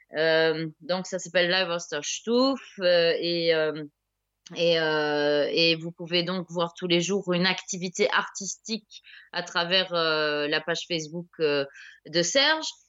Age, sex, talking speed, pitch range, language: 20-39, female, 140 wpm, 175-215 Hz, English